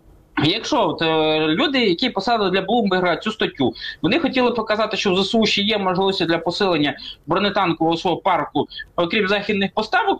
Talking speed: 145 wpm